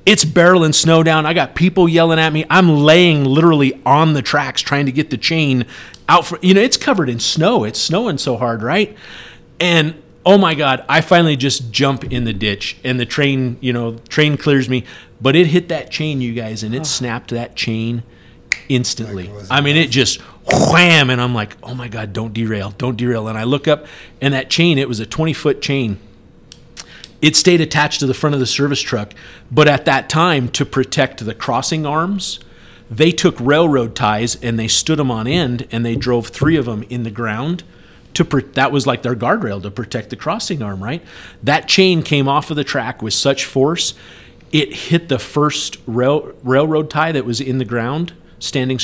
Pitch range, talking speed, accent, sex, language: 120-155 Hz, 205 wpm, American, male, English